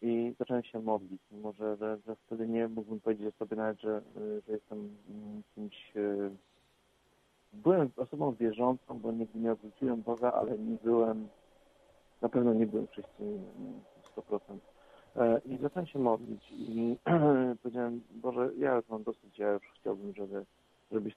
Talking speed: 140 wpm